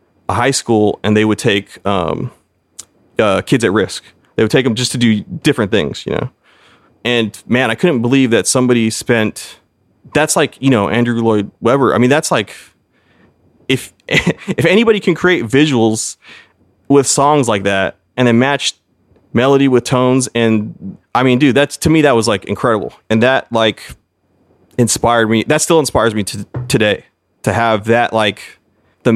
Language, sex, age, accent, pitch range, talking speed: English, male, 30-49, American, 100-125 Hz, 175 wpm